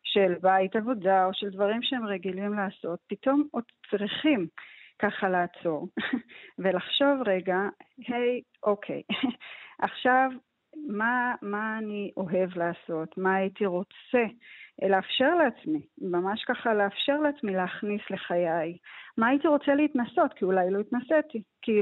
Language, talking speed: Hebrew, 120 wpm